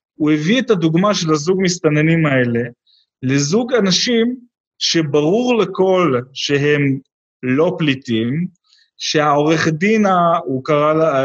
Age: 30-49